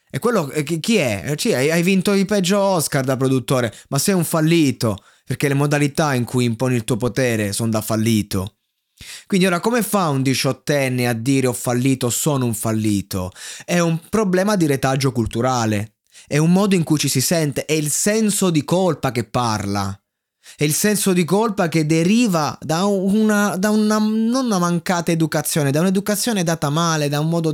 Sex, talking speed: male, 185 wpm